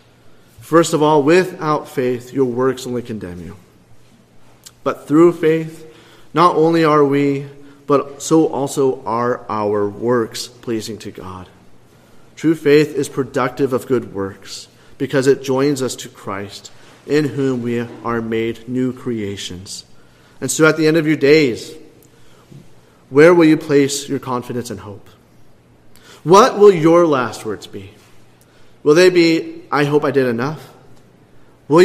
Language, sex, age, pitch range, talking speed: English, male, 40-59, 110-155 Hz, 145 wpm